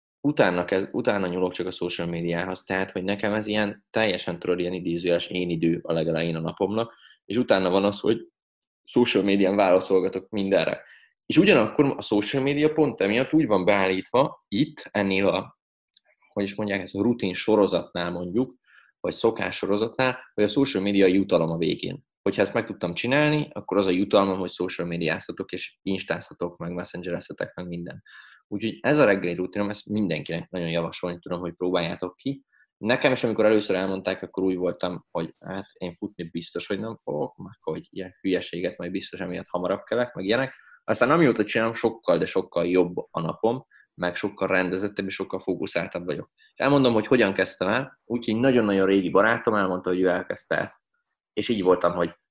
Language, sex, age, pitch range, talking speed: Hungarian, male, 20-39, 90-105 Hz, 180 wpm